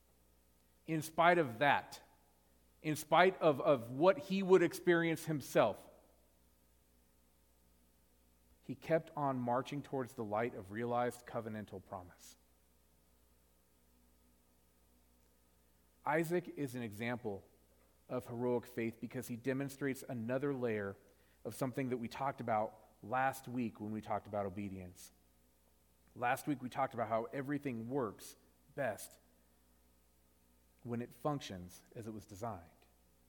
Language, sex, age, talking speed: English, male, 40-59, 115 wpm